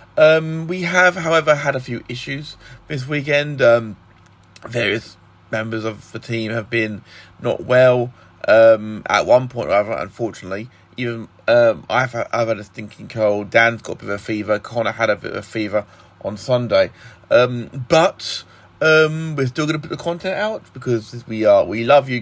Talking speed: 185 wpm